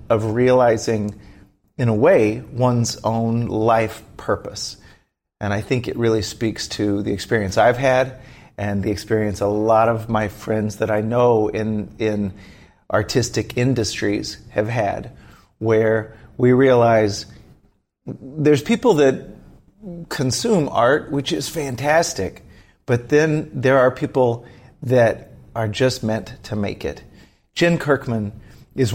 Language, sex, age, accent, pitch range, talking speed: English, male, 30-49, American, 105-130 Hz, 130 wpm